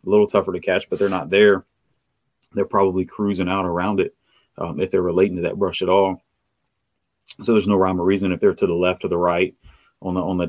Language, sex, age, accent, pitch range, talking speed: English, male, 30-49, American, 90-100 Hz, 240 wpm